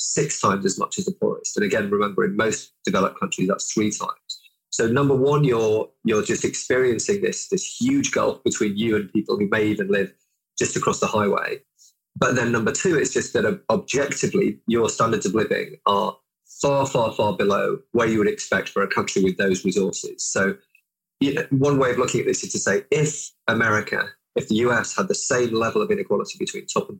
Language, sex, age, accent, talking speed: English, male, 20-39, British, 205 wpm